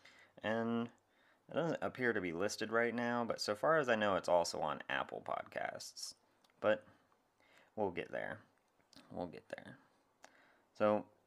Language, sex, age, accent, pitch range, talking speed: English, male, 30-49, American, 80-110 Hz, 150 wpm